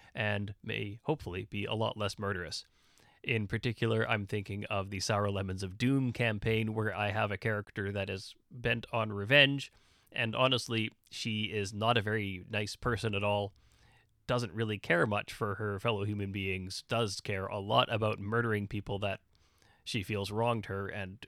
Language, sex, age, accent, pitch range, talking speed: English, male, 30-49, American, 100-120 Hz, 175 wpm